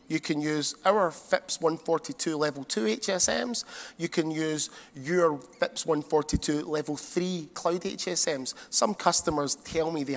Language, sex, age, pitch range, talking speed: English, male, 30-49, 150-185 Hz, 140 wpm